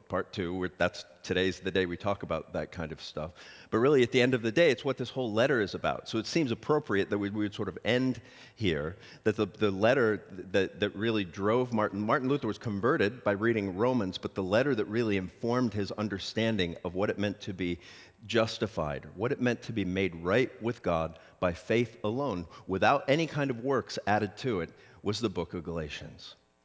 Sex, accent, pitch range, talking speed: male, American, 90-115 Hz, 215 wpm